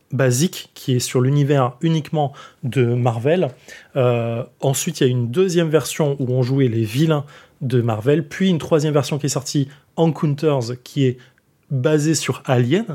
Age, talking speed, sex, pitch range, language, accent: 20-39, 165 wpm, male, 130-160 Hz, French, French